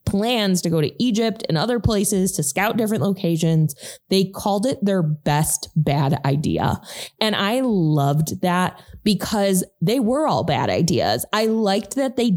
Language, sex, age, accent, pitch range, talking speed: English, female, 20-39, American, 160-210 Hz, 160 wpm